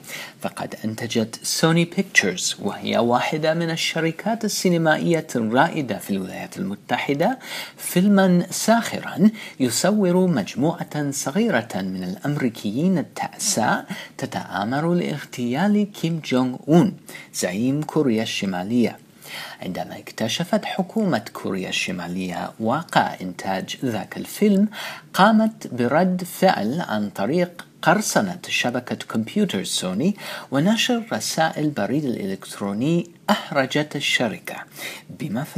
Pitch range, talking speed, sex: 125-195 Hz, 90 wpm, male